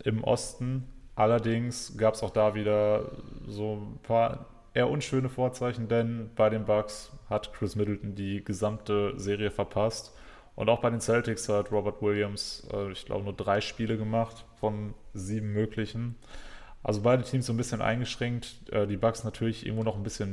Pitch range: 100-115 Hz